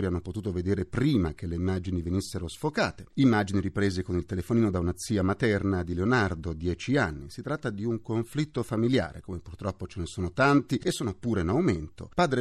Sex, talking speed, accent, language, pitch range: male, 195 wpm, native, Italian, 90-130 Hz